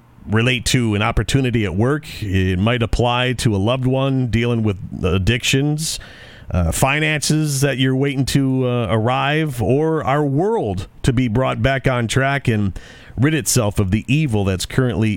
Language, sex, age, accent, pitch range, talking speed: English, male, 40-59, American, 110-135 Hz, 160 wpm